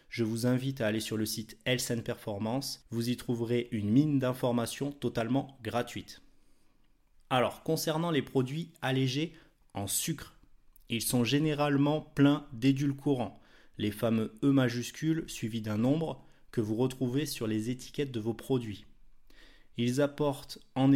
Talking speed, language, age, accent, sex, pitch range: 140 wpm, French, 30-49, French, male, 110-145 Hz